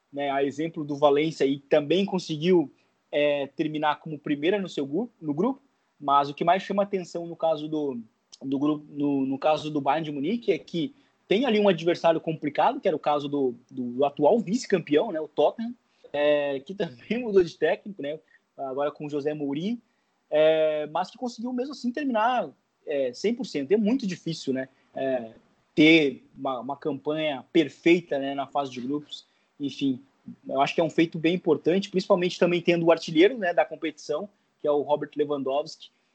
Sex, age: male, 20-39